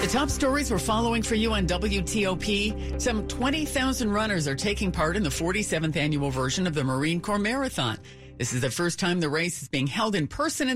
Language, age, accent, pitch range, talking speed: English, 50-69, American, 145-215 Hz, 210 wpm